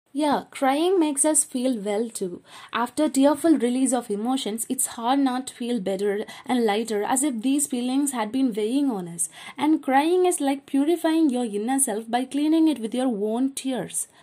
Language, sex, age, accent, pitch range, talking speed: English, female, 20-39, Indian, 220-290 Hz, 185 wpm